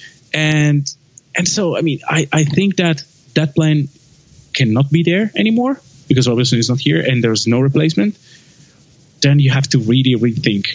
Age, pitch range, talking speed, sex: 20-39, 135-165 Hz, 165 wpm, male